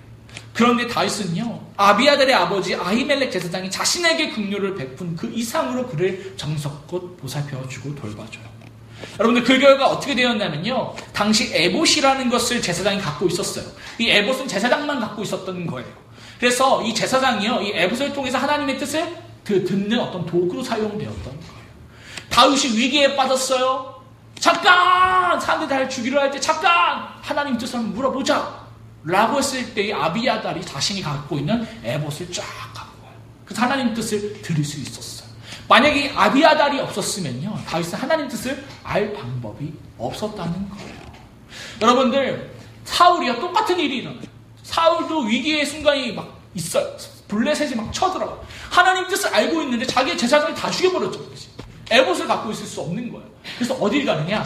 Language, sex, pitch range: Korean, male, 170-275 Hz